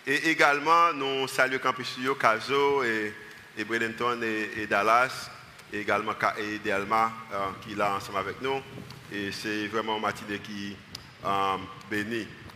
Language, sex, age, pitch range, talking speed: French, male, 50-69, 130-155 Hz, 130 wpm